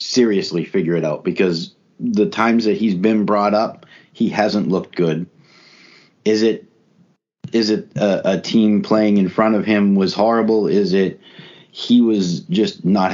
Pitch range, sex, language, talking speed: 95-120 Hz, male, English, 165 wpm